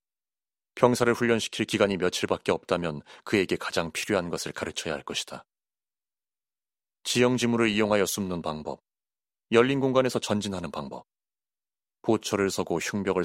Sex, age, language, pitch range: male, 30-49, Korean, 90-115 Hz